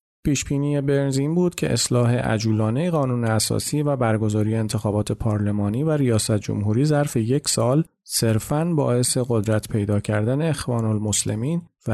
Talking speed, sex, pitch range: 130 wpm, male, 110-135 Hz